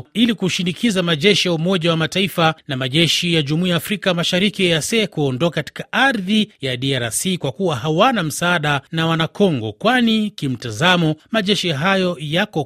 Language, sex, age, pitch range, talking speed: Swahili, male, 30-49, 140-195 Hz, 135 wpm